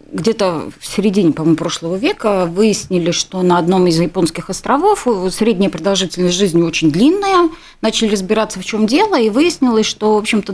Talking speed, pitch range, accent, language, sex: 160 wpm, 185-250 Hz, native, Russian, female